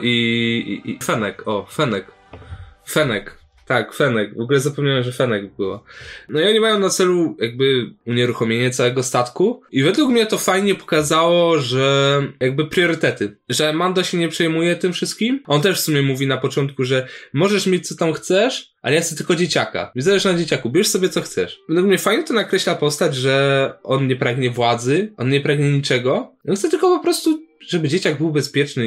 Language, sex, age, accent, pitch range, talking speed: Polish, male, 10-29, native, 120-175 Hz, 185 wpm